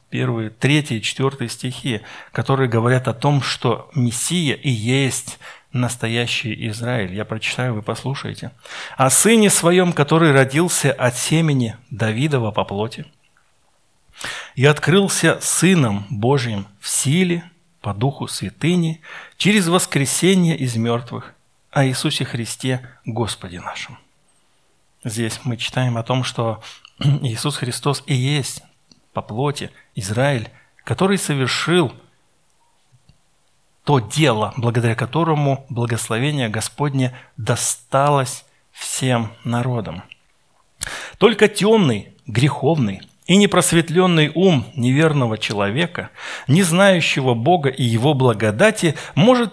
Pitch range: 120-160 Hz